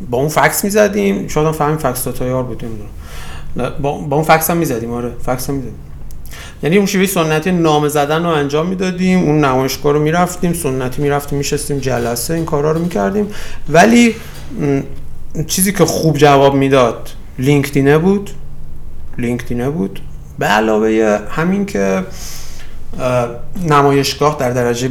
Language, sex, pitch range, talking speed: Persian, male, 115-150 Hz, 135 wpm